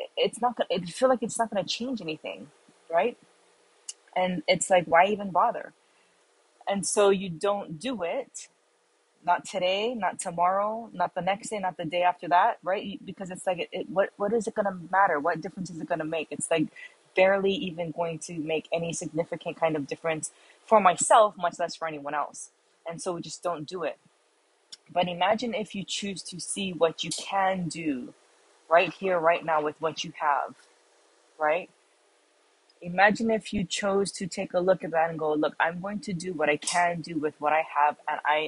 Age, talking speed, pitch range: 20-39, 200 wpm, 160-195 Hz